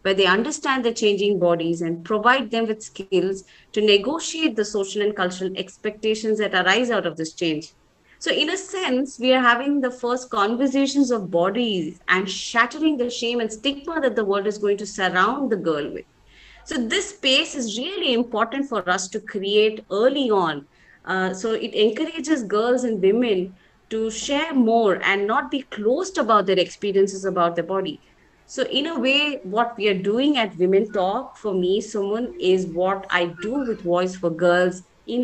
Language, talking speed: English, 180 wpm